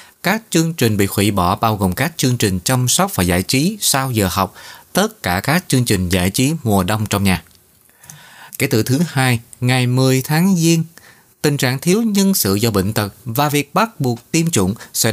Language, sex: Vietnamese, male